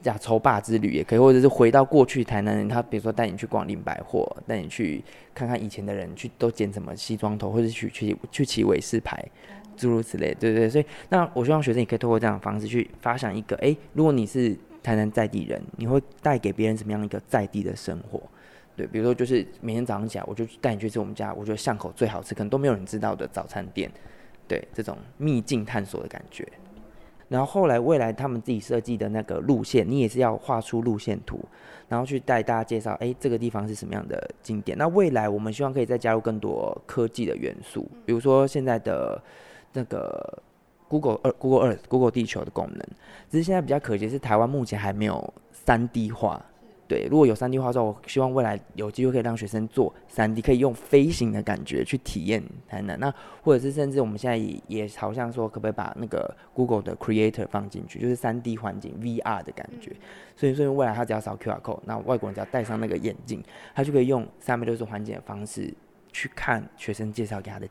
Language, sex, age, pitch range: Chinese, male, 20-39, 110-130 Hz